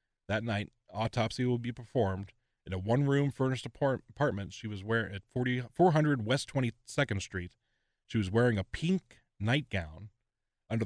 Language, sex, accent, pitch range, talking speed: English, male, American, 100-125 Hz, 155 wpm